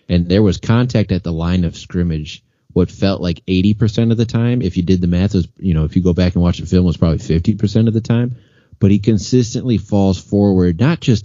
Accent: American